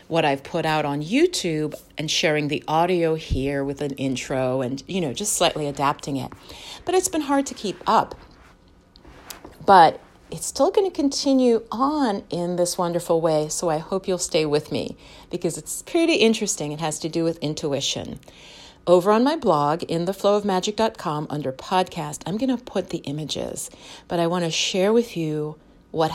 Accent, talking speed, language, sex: American, 180 wpm, English, female